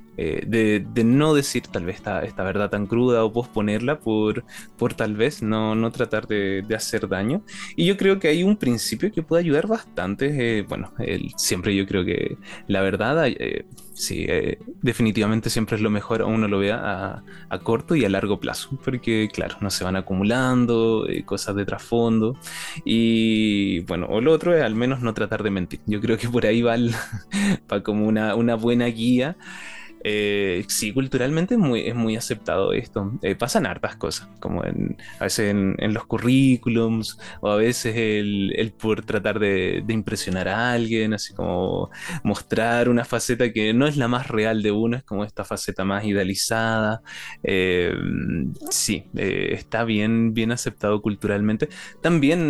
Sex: male